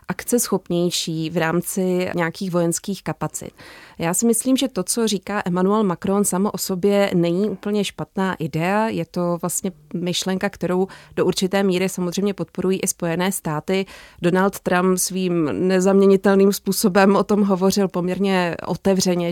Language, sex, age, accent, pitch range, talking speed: Czech, female, 20-39, native, 170-195 Hz, 145 wpm